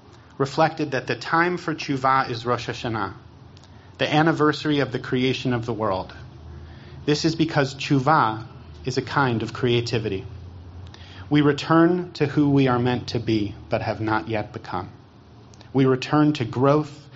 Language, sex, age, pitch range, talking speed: English, male, 40-59, 115-135 Hz, 155 wpm